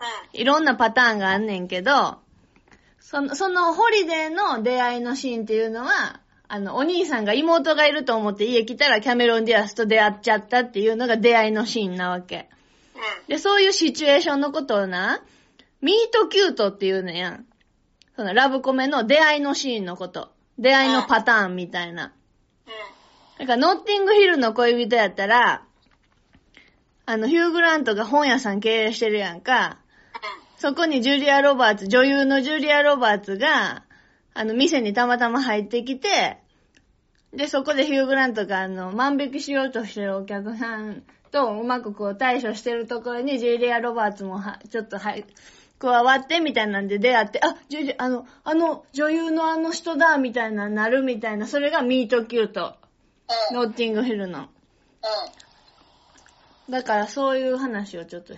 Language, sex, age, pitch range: Japanese, female, 20-39, 215-285 Hz